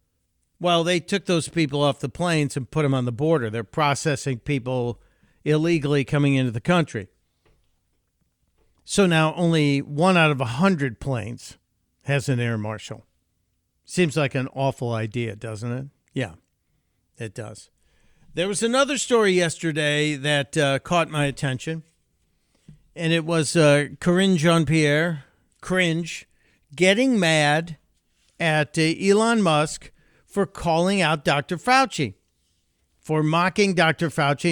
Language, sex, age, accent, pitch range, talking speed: English, male, 60-79, American, 125-165 Hz, 130 wpm